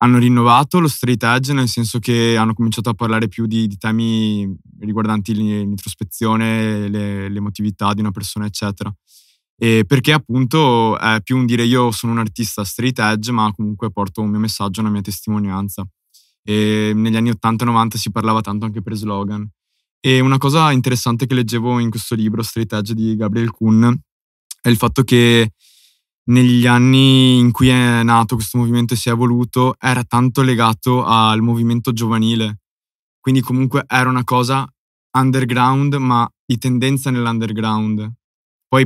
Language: Italian